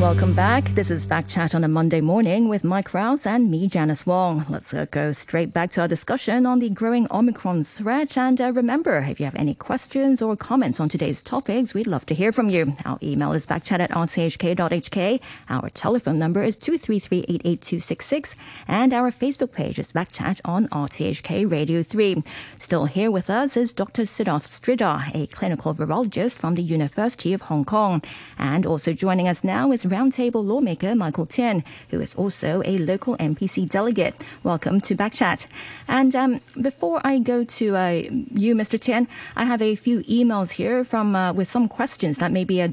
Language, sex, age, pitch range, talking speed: English, female, 40-59, 165-235 Hz, 190 wpm